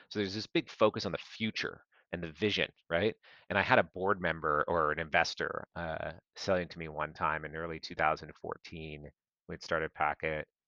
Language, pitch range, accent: English, 85-110 Hz, American